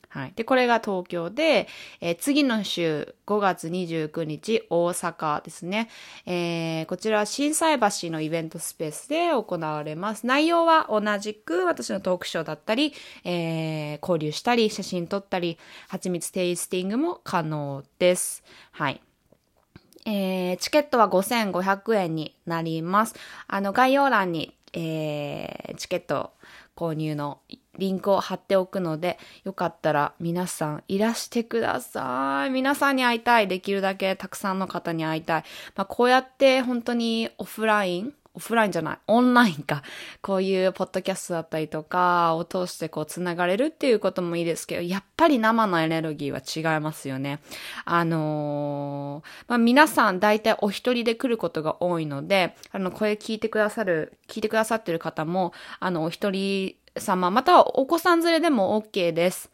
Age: 20-39